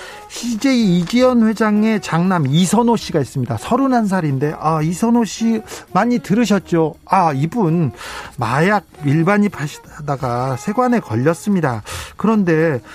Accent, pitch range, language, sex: native, 155-225 Hz, Korean, male